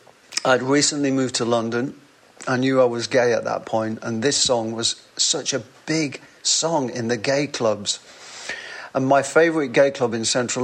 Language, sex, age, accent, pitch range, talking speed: English, male, 40-59, British, 115-140 Hz, 180 wpm